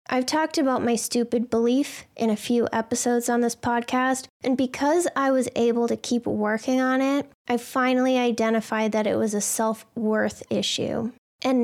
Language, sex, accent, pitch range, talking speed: English, female, American, 220-250 Hz, 170 wpm